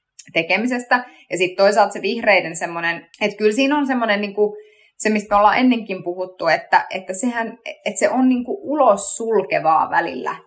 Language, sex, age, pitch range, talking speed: Finnish, female, 20-39, 180-230 Hz, 165 wpm